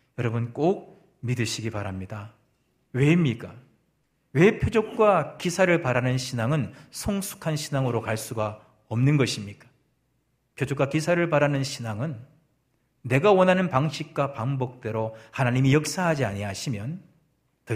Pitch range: 115-155 Hz